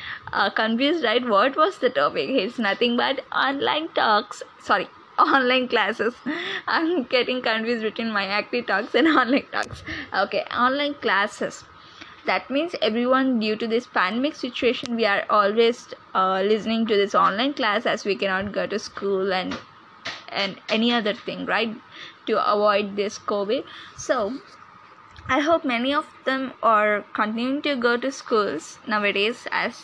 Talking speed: 150 wpm